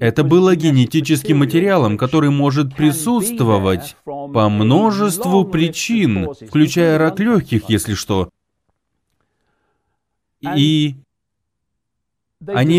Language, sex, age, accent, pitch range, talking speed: Russian, male, 30-49, native, 110-160 Hz, 80 wpm